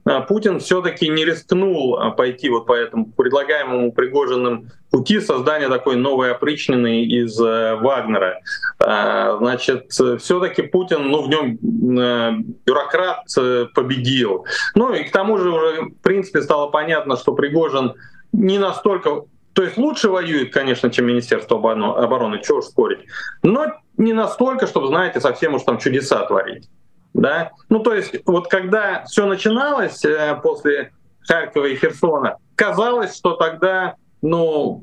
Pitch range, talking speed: 150-230 Hz, 135 wpm